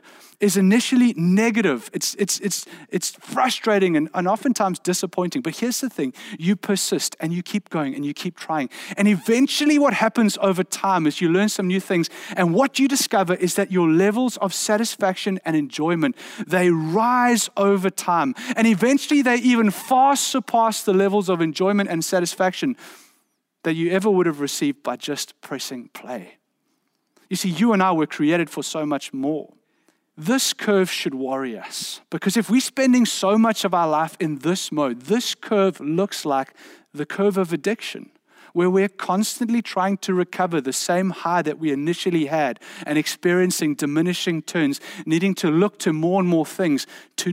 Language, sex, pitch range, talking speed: English, male, 175-230 Hz, 175 wpm